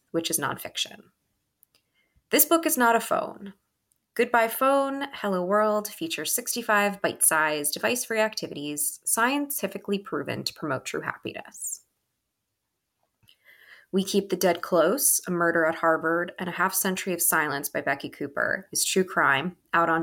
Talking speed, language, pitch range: 145 wpm, English, 160-210 Hz